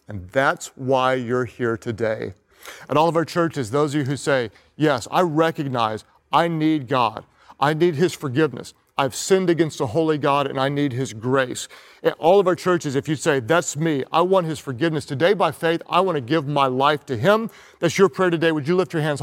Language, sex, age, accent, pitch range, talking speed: English, male, 40-59, American, 135-165 Hz, 220 wpm